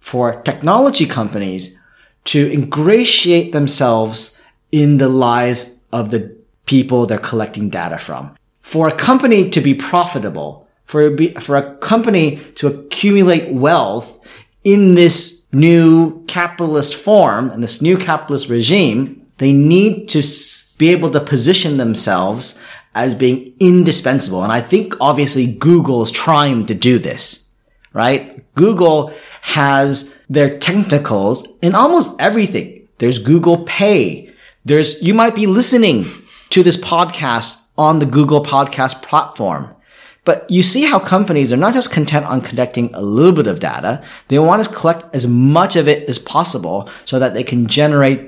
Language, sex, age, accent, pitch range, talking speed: English, male, 30-49, American, 130-180 Hz, 145 wpm